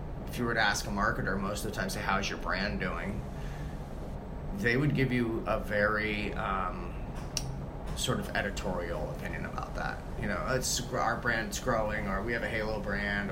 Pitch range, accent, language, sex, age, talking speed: 95-130 Hz, American, English, male, 30-49, 180 wpm